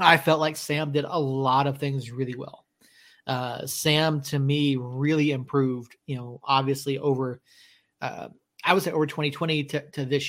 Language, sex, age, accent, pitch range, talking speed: English, male, 30-49, American, 135-155 Hz, 175 wpm